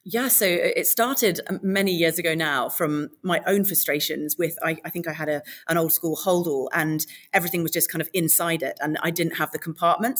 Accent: British